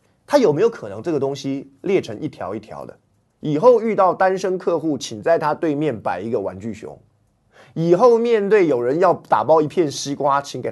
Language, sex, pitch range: Chinese, male, 125-185 Hz